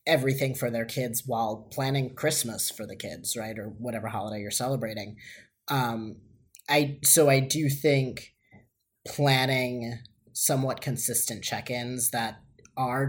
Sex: male